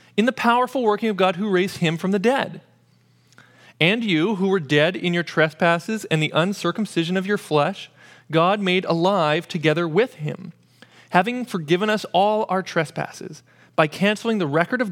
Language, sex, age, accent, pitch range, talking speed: English, male, 30-49, American, 155-215 Hz, 175 wpm